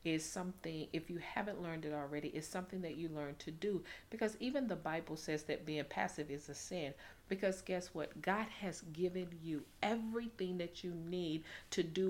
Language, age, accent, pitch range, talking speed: English, 40-59, American, 155-185 Hz, 195 wpm